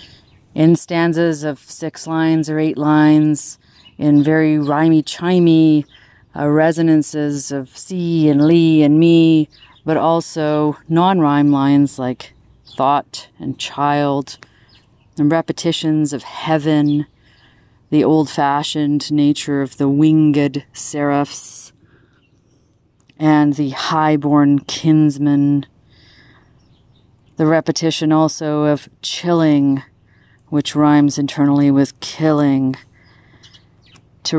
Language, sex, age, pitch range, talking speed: English, female, 30-49, 130-155 Hz, 95 wpm